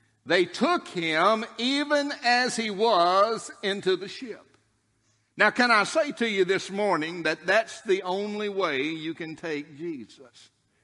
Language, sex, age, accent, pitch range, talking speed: English, male, 60-79, American, 175-225 Hz, 150 wpm